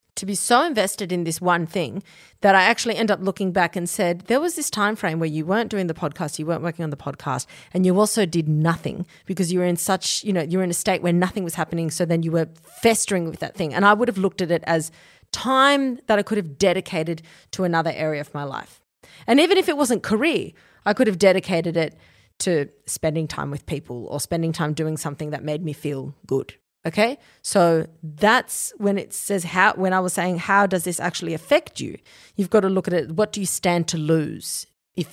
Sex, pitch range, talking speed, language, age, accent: female, 160-200 Hz, 235 wpm, English, 30-49, Australian